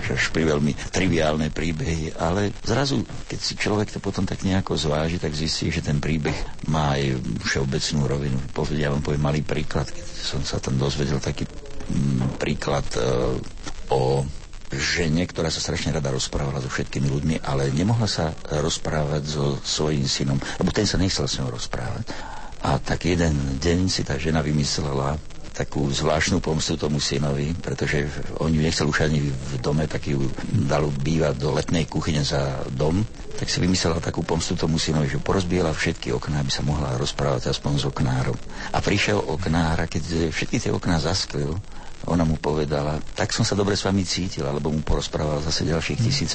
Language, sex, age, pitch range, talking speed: Slovak, male, 60-79, 75-85 Hz, 170 wpm